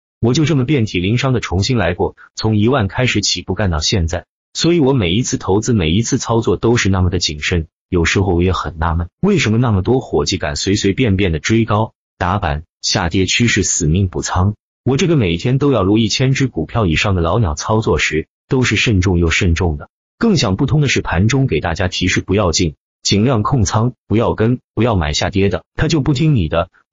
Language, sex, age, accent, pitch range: Chinese, male, 30-49, native, 85-125 Hz